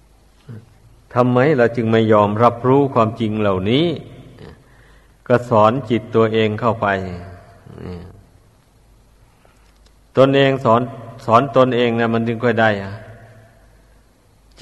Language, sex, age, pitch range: Thai, male, 60-79, 110-125 Hz